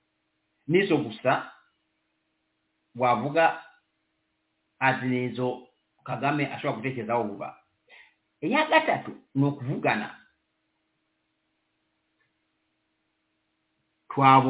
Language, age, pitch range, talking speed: English, 50-69, 145-230 Hz, 50 wpm